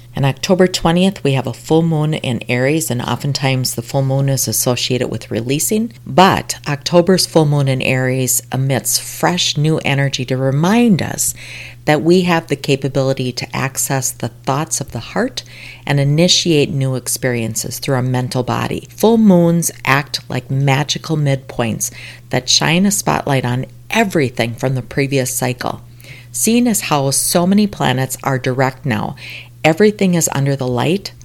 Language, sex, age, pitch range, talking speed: English, female, 40-59, 125-155 Hz, 155 wpm